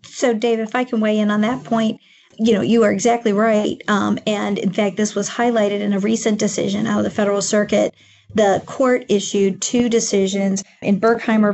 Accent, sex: American, female